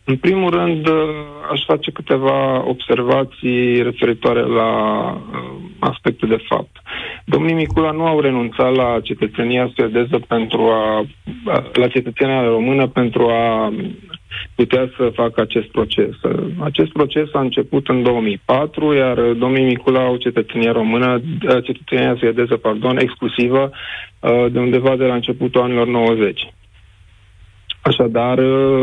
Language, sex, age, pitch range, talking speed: Romanian, male, 40-59, 115-135 Hz, 115 wpm